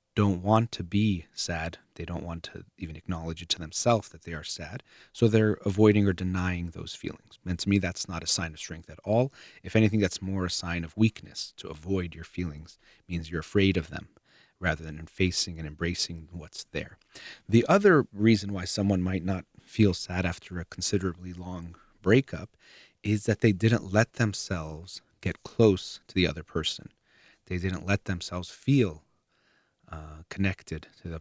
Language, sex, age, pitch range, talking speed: English, male, 30-49, 85-105 Hz, 185 wpm